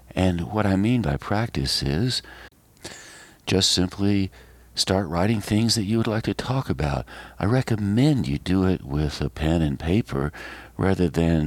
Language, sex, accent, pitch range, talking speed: English, male, American, 75-105 Hz, 155 wpm